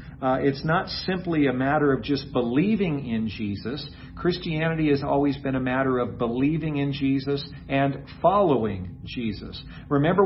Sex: male